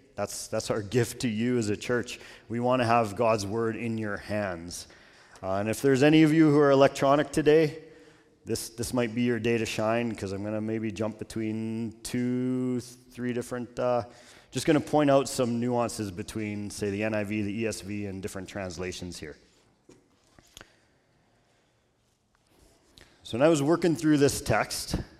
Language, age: English, 30-49